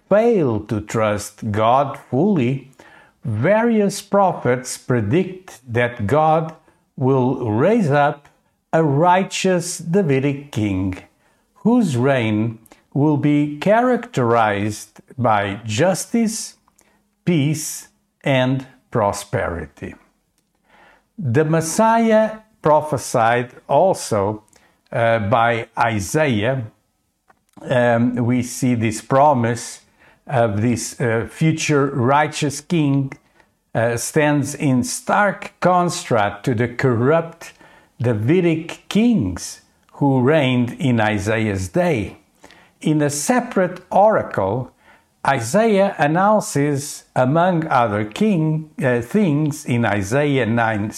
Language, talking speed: English, 85 wpm